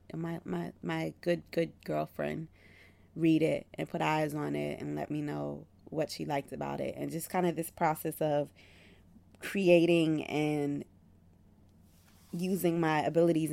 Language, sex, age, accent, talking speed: English, female, 20-39, American, 150 wpm